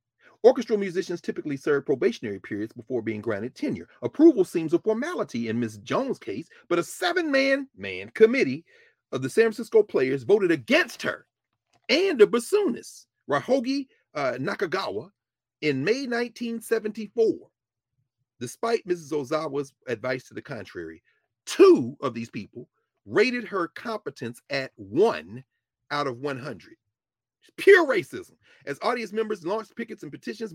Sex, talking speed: male, 135 wpm